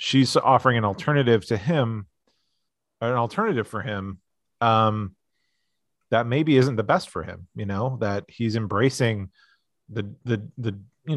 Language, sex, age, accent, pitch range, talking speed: English, male, 30-49, American, 105-130 Hz, 145 wpm